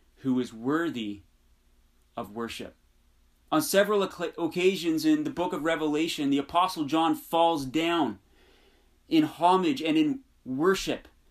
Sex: male